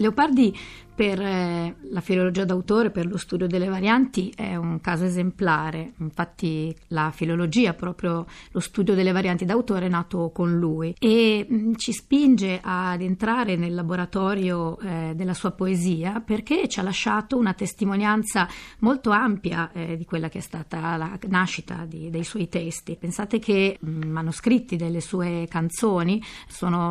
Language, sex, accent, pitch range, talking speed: Italian, female, native, 175-220 Hz, 150 wpm